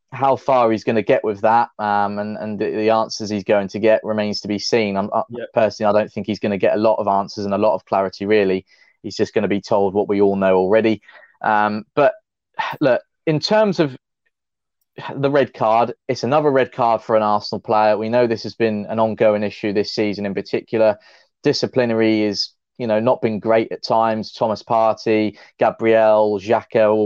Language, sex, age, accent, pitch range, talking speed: English, male, 20-39, British, 105-120 Hz, 210 wpm